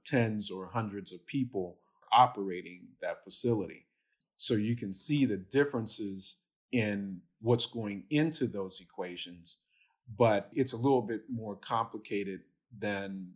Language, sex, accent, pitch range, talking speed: English, male, American, 100-120 Hz, 125 wpm